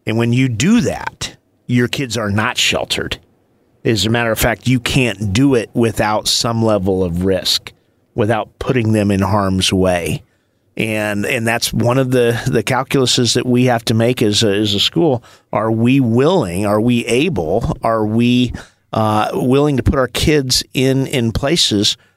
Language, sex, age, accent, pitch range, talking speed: English, male, 50-69, American, 100-120 Hz, 175 wpm